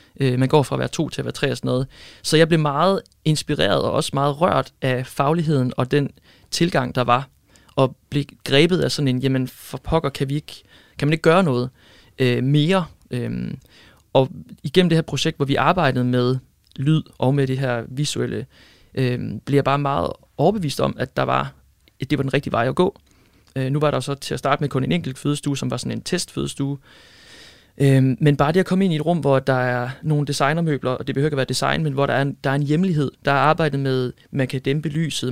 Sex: male